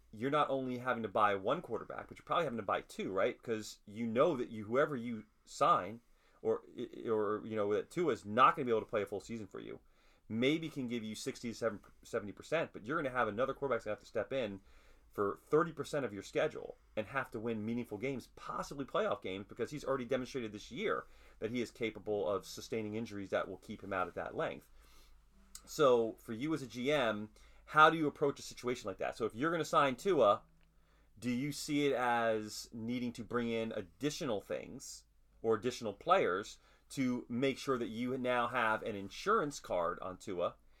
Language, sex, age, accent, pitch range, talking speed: English, male, 30-49, American, 105-130 Hz, 210 wpm